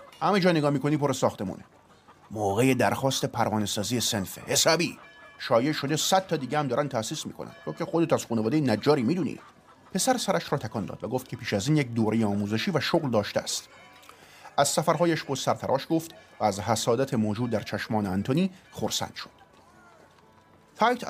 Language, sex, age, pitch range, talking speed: Persian, male, 30-49, 110-150 Hz, 170 wpm